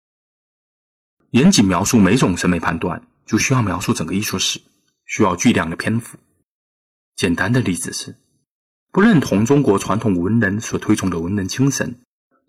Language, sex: Chinese, male